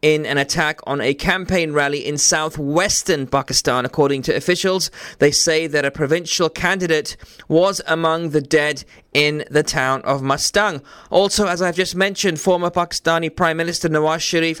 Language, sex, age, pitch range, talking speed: English, male, 20-39, 145-175 Hz, 160 wpm